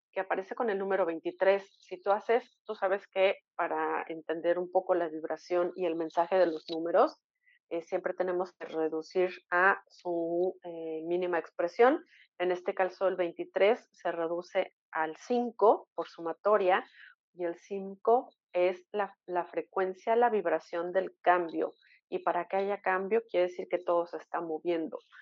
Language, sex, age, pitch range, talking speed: Spanish, female, 40-59, 175-230 Hz, 160 wpm